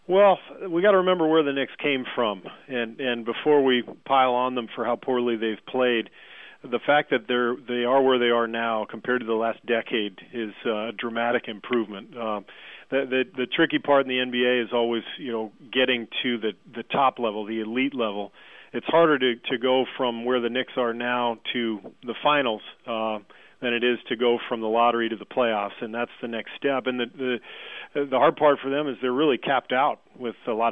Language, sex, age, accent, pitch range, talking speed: English, male, 40-59, American, 115-130 Hz, 215 wpm